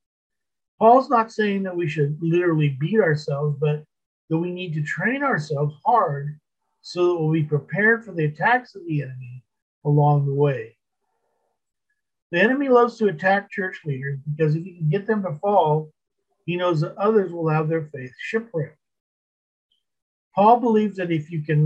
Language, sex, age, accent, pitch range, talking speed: English, male, 50-69, American, 150-210 Hz, 170 wpm